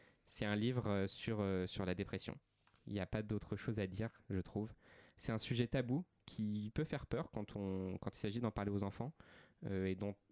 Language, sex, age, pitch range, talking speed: French, male, 20-39, 100-125 Hz, 220 wpm